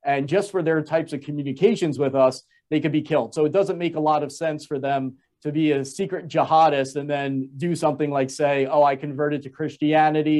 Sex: male